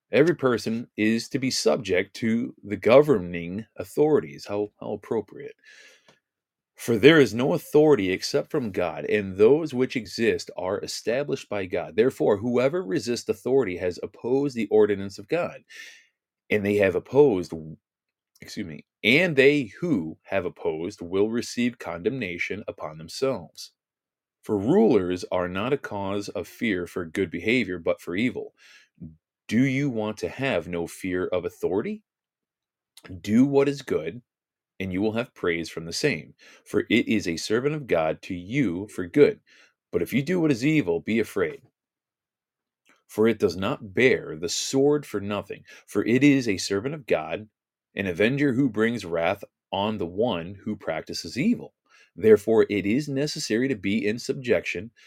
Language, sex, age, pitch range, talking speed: English, male, 30-49, 95-140 Hz, 160 wpm